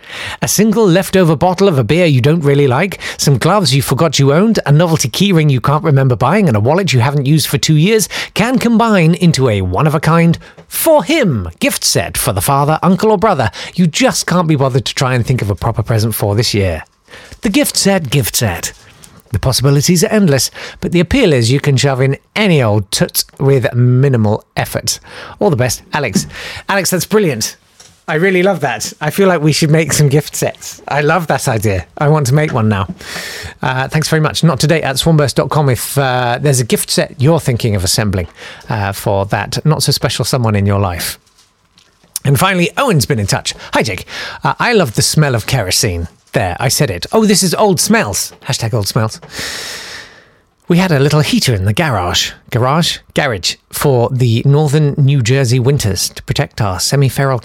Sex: male